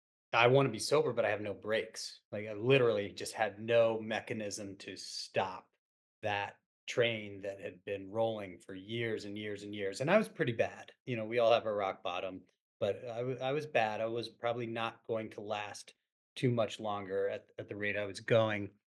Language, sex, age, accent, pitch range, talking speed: English, male, 30-49, American, 105-125 Hz, 210 wpm